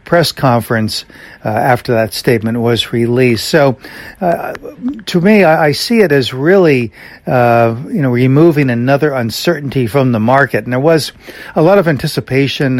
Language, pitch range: English, 115-135 Hz